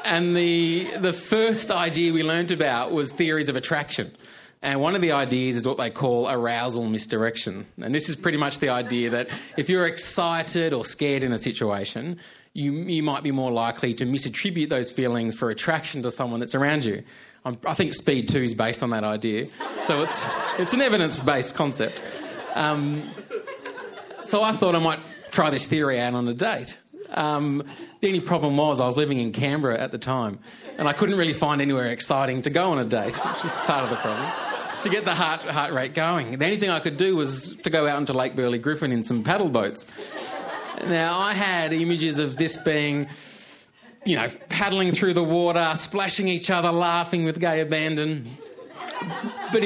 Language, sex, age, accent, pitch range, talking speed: English, male, 20-39, Australian, 130-170 Hz, 195 wpm